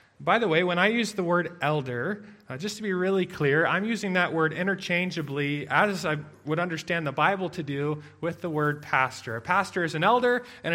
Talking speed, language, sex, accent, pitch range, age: 210 wpm, English, male, American, 145-185 Hz, 30-49